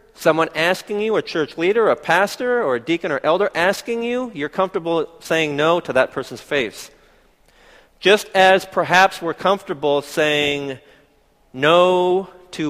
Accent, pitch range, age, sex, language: American, 145-180 Hz, 40-59, male, Korean